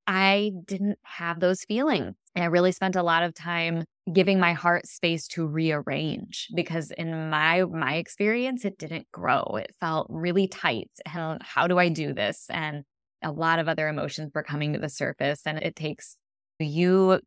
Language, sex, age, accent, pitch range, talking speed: English, female, 20-39, American, 155-185 Hz, 185 wpm